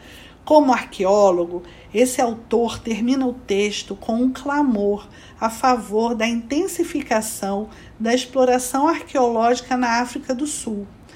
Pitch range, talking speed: 220-275 Hz, 115 wpm